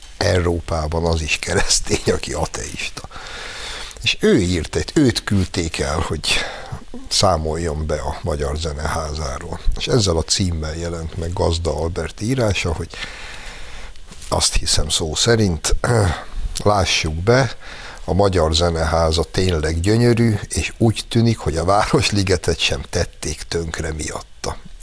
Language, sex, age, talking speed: Hungarian, male, 60-79, 120 wpm